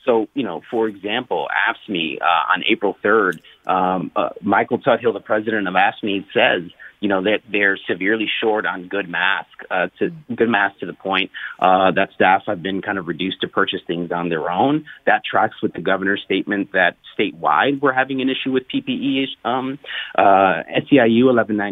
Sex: male